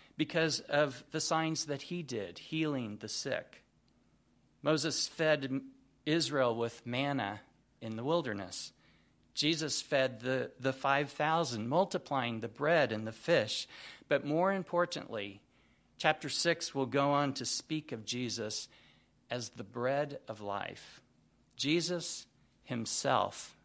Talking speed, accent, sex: 120 wpm, American, male